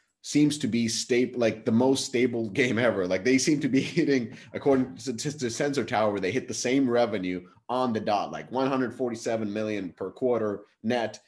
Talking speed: 185 wpm